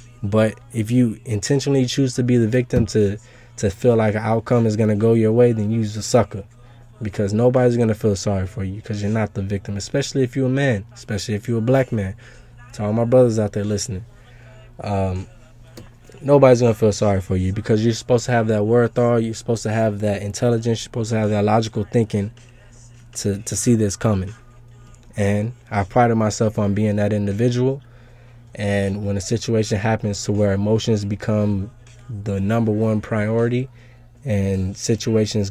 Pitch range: 105-120 Hz